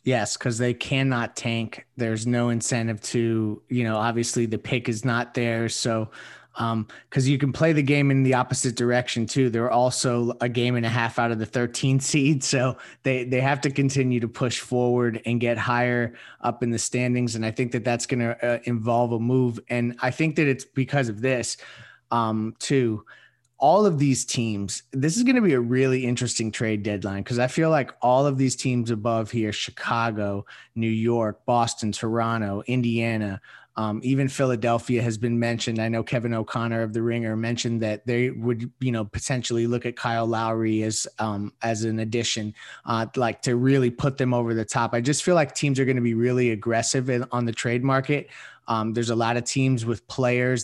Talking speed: 205 wpm